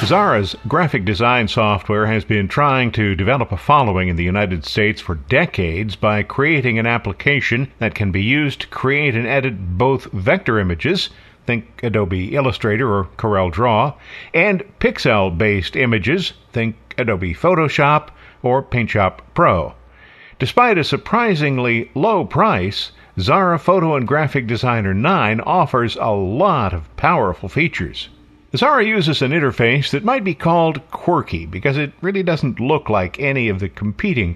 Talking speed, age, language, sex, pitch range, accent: 145 wpm, 50-69, English, male, 105-140 Hz, American